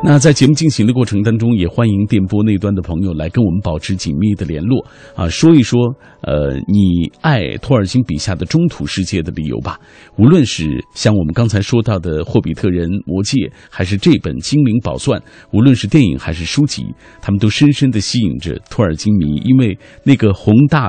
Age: 50-69